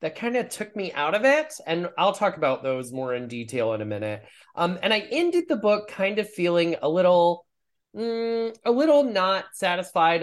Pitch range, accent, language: 145-225 Hz, American, English